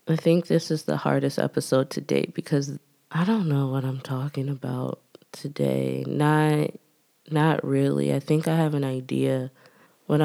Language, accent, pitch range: English, American, 125-155 Hz